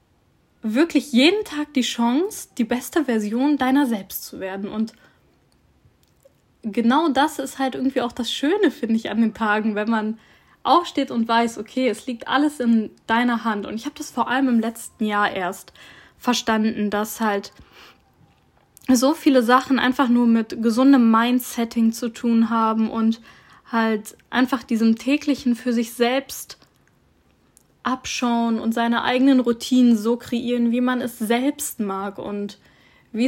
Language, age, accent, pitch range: German, 10-29, German, 225-270 Hz